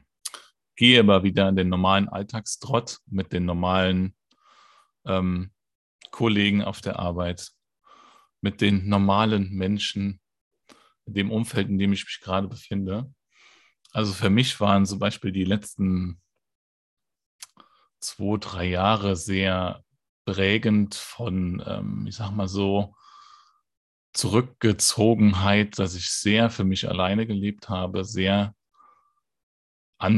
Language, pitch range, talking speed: German, 95-110 Hz, 115 wpm